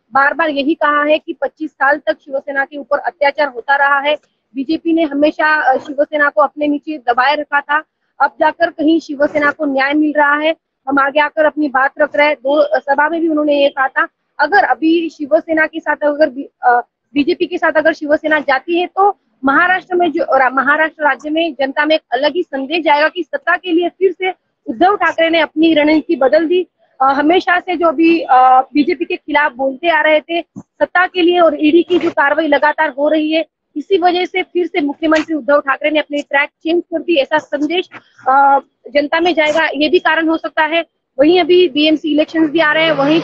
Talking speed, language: 210 wpm, Hindi